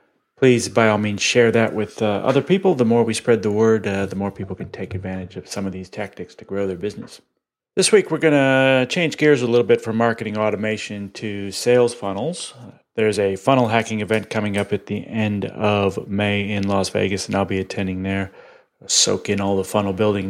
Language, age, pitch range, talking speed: English, 30-49, 100-120 Hz, 225 wpm